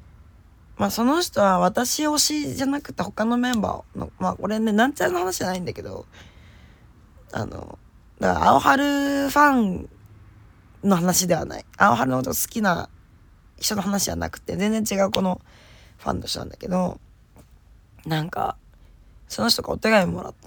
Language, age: Japanese, 20-39